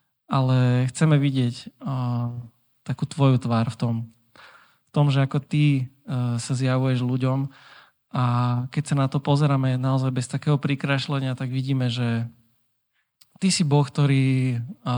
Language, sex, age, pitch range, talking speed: Slovak, male, 20-39, 125-140 Hz, 140 wpm